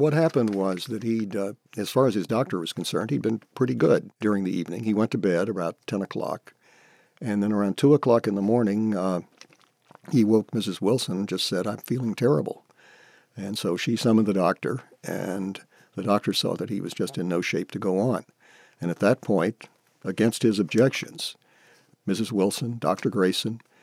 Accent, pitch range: American, 95-120 Hz